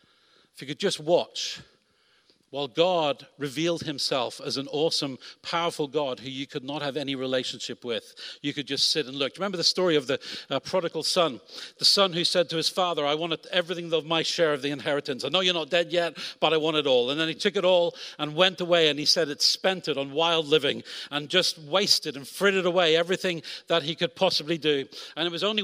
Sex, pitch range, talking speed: male, 145-175 Hz, 235 wpm